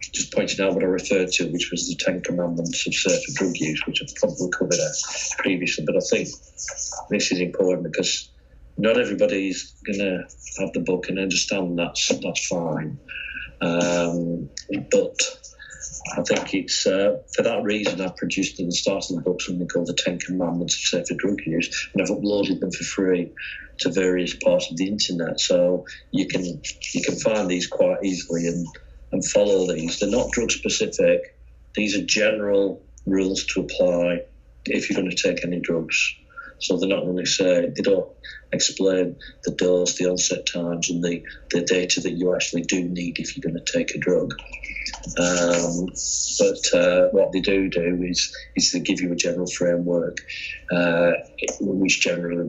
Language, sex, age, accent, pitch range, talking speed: English, male, 40-59, British, 85-105 Hz, 175 wpm